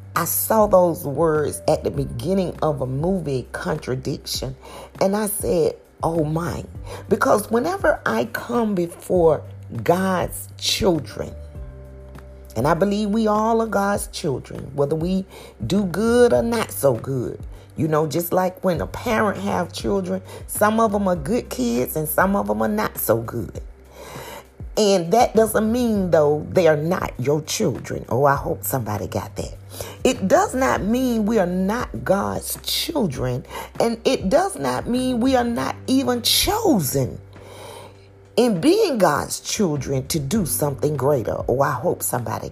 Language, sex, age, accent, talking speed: English, female, 40-59, American, 155 wpm